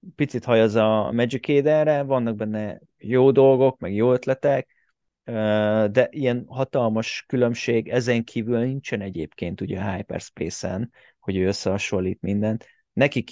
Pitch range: 105-130 Hz